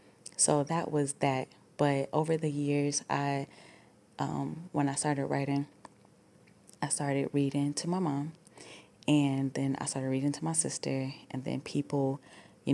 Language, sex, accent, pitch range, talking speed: English, female, American, 135-150 Hz, 150 wpm